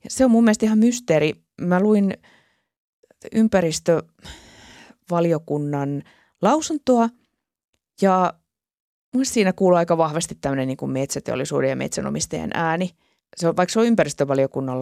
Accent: native